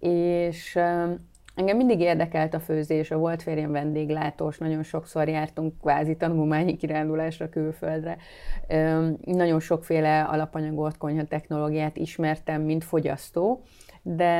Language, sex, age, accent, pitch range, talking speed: English, female, 30-49, Finnish, 145-165 Hz, 105 wpm